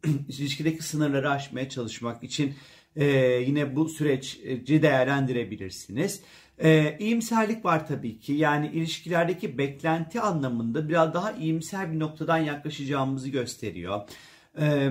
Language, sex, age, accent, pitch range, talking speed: Turkish, male, 40-59, native, 120-160 Hz, 110 wpm